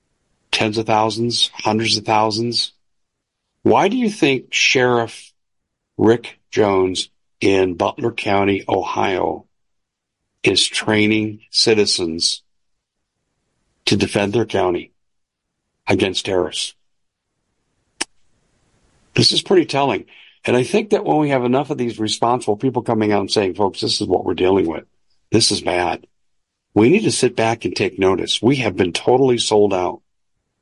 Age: 60-79